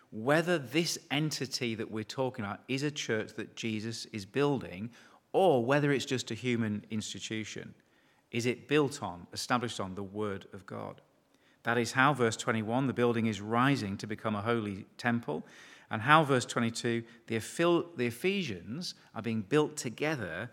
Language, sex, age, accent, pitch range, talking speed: English, male, 40-59, British, 105-135 Hz, 160 wpm